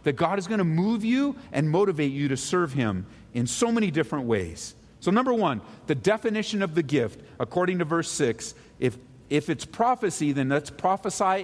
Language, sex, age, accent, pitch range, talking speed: English, male, 50-69, American, 150-200 Hz, 195 wpm